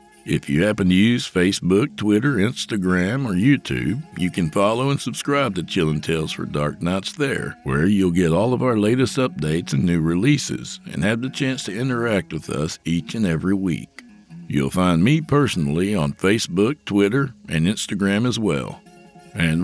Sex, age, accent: male, 60-79, American